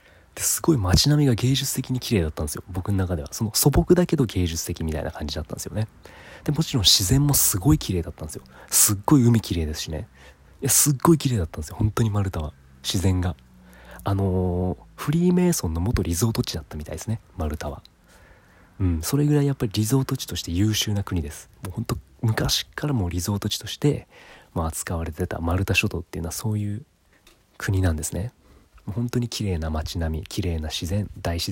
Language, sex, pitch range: Japanese, male, 80-115 Hz